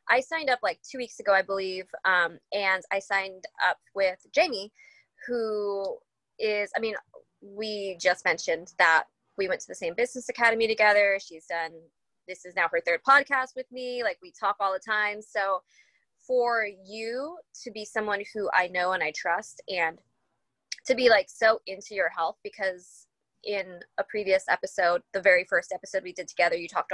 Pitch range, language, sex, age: 185-235 Hz, English, female, 20-39